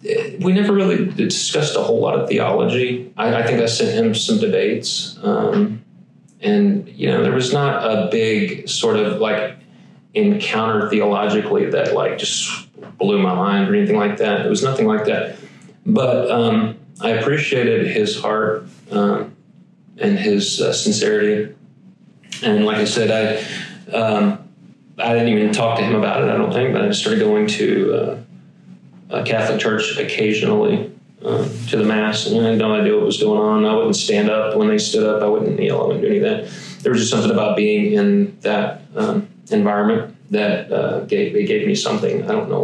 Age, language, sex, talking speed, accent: 30-49, English, male, 195 wpm, American